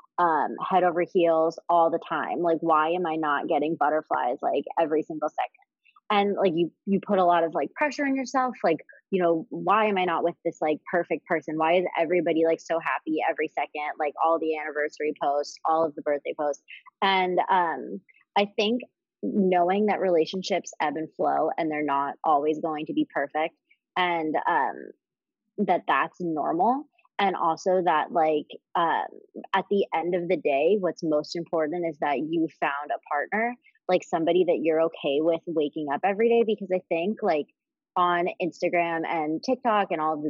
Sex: female